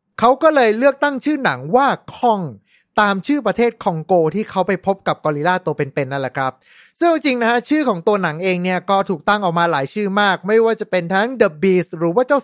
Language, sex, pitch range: Thai, male, 170-240 Hz